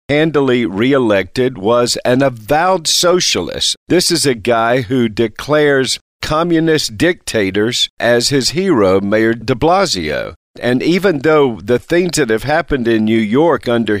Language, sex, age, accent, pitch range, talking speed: English, male, 50-69, American, 110-145 Hz, 135 wpm